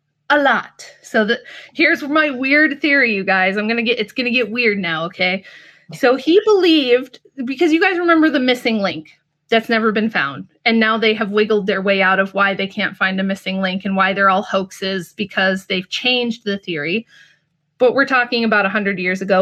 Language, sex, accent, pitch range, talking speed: English, female, American, 195-265 Hz, 205 wpm